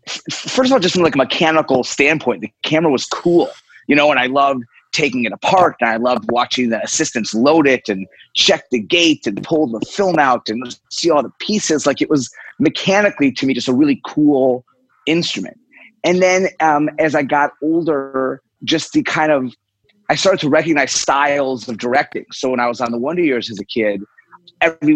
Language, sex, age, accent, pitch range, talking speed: English, male, 30-49, American, 125-160 Hz, 200 wpm